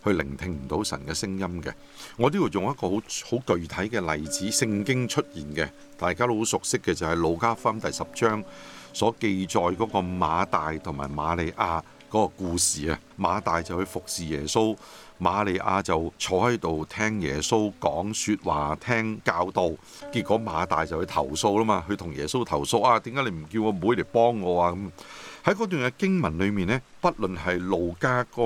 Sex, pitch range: male, 85-115 Hz